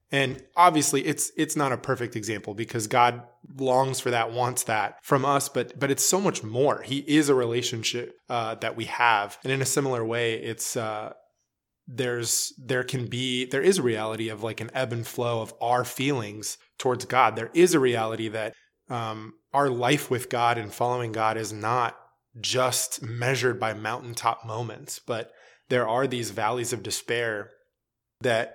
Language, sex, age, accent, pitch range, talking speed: English, male, 20-39, American, 110-130 Hz, 180 wpm